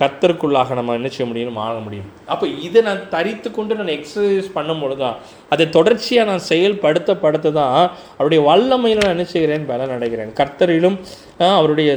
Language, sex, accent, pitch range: Tamil, male, native, 135-180 Hz